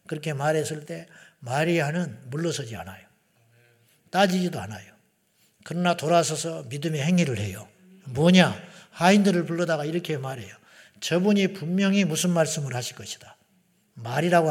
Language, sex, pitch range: Korean, male, 150-200 Hz